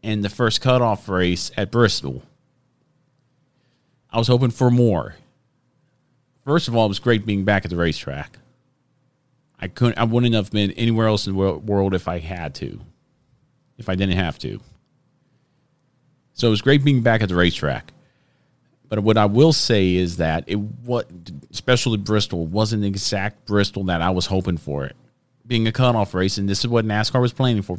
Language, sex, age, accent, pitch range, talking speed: English, male, 40-59, American, 95-125 Hz, 185 wpm